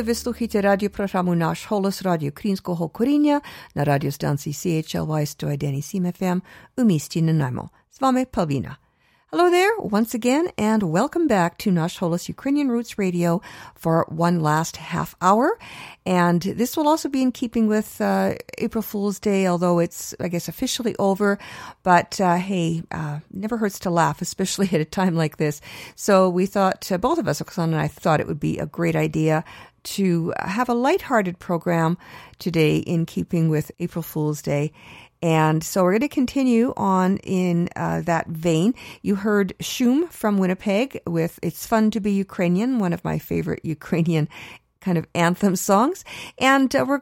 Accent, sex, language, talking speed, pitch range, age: American, female, English, 145 wpm, 170-225 Hz, 50-69